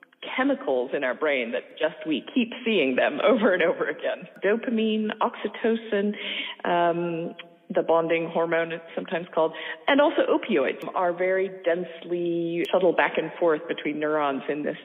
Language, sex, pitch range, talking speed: English, female, 165-235 Hz, 150 wpm